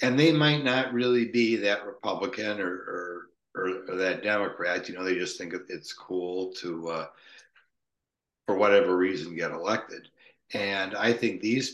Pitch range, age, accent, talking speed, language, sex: 95-115 Hz, 60-79, American, 160 wpm, English, male